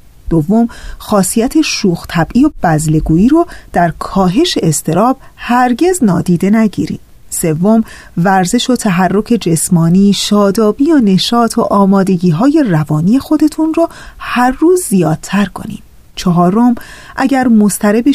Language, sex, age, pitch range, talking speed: Persian, female, 30-49, 180-260 Hz, 110 wpm